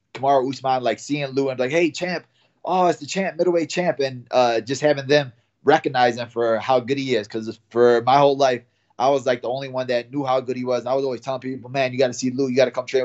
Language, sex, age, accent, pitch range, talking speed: English, male, 20-39, American, 120-135 Hz, 280 wpm